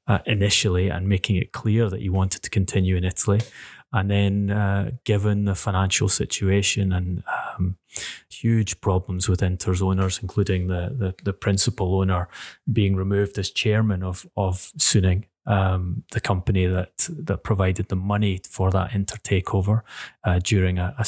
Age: 30-49